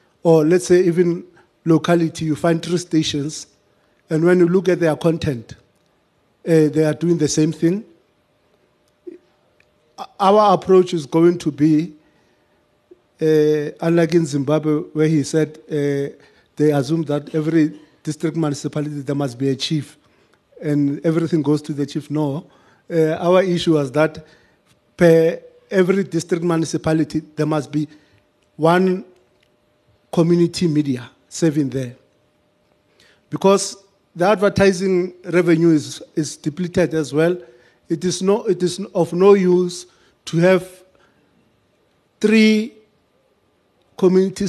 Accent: South African